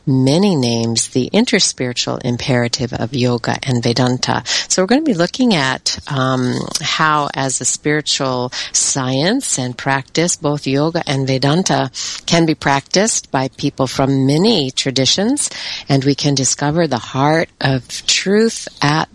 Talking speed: 140 wpm